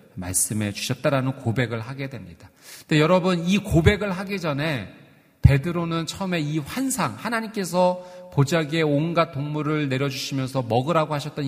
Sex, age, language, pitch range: male, 40-59, Korean, 120-165 Hz